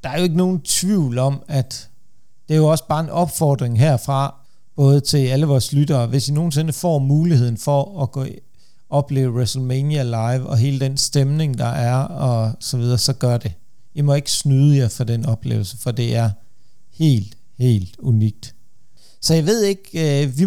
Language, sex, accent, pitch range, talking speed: Danish, male, native, 135-170 Hz, 190 wpm